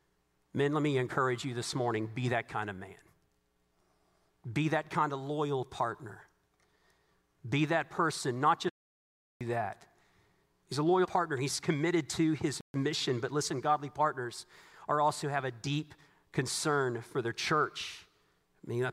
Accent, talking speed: American, 150 wpm